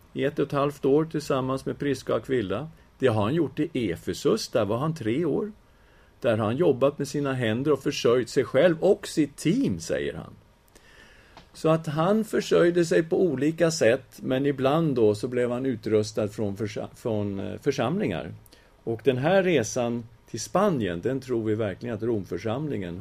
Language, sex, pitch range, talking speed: English, male, 110-140 Hz, 170 wpm